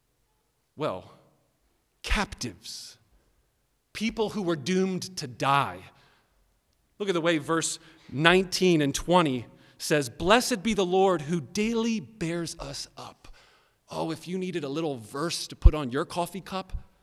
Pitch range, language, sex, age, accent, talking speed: 145-220 Hz, English, male, 40-59, American, 135 wpm